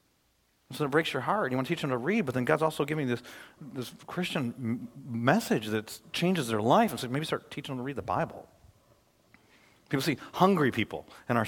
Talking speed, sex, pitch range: 220 wpm, male, 135-220 Hz